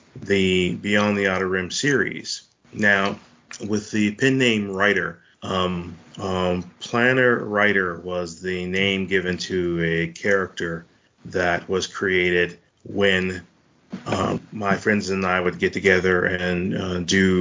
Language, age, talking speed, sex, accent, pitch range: English, 30-49, 130 wpm, male, American, 90-105 Hz